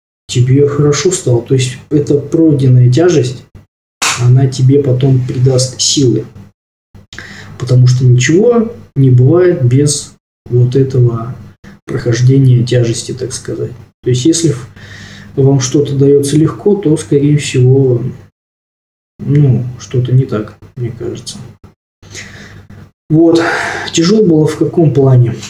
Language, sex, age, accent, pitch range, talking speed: Russian, male, 20-39, native, 115-140 Hz, 110 wpm